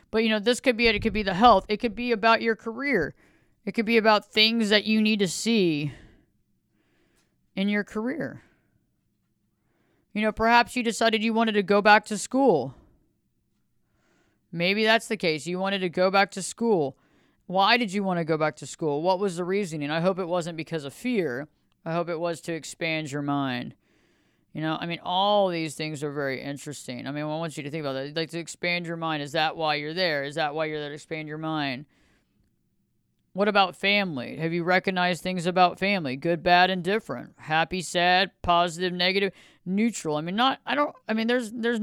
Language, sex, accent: English, female, American